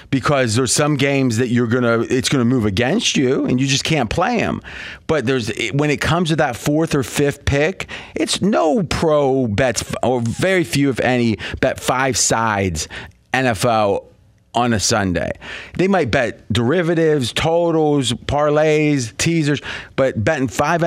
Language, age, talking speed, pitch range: English, 30-49, 160 wpm, 115-145 Hz